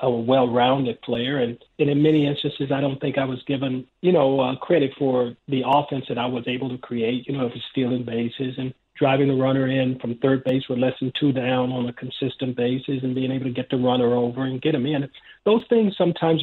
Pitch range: 130-150 Hz